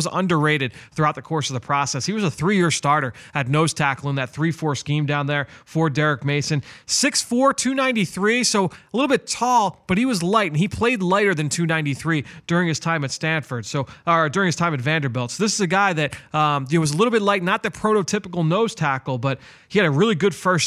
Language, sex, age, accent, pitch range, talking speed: English, male, 30-49, American, 145-175 Hz, 230 wpm